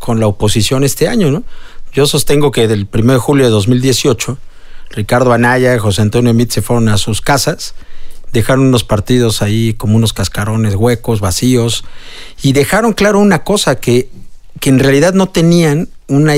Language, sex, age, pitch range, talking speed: Spanish, male, 50-69, 110-140 Hz, 170 wpm